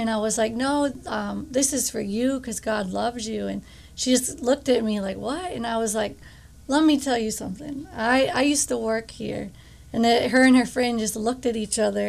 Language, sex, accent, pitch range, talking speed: English, female, American, 215-240 Hz, 240 wpm